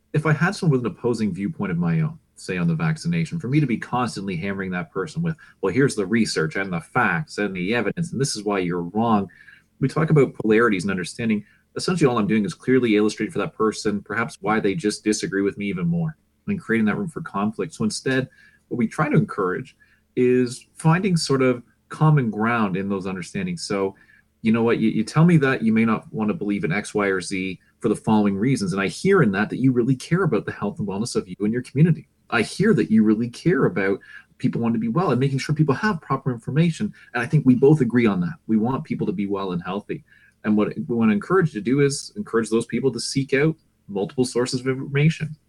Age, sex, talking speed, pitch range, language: 30-49, male, 245 wpm, 110-155 Hz, English